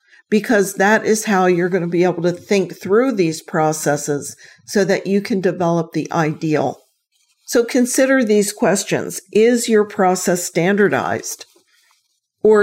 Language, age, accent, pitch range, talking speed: English, 50-69, American, 175-210 Hz, 145 wpm